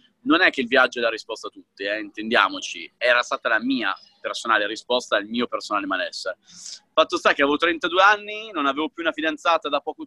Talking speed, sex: 210 wpm, male